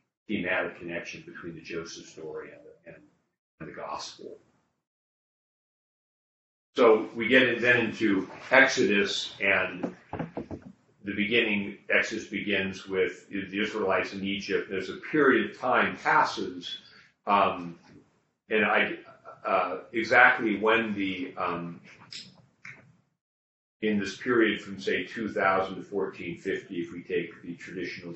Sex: male